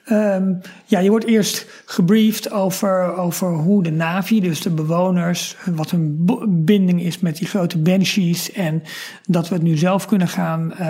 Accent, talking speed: Dutch, 170 wpm